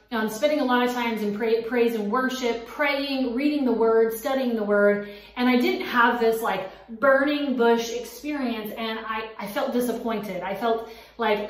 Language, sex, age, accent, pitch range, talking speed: English, female, 30-49, American, 215-260 Hz, 185 wpm